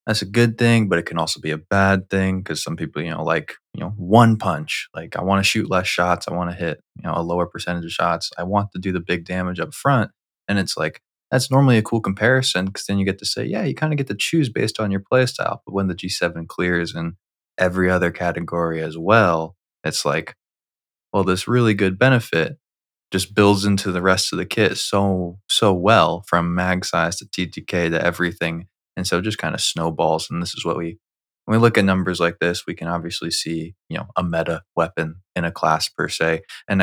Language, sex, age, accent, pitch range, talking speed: English, male, 20-39, American, 85-100 Hz, 235 wpm